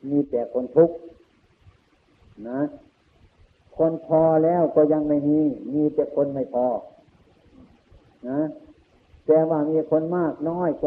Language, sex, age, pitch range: Thai, male, 60-79, 125-160 Hz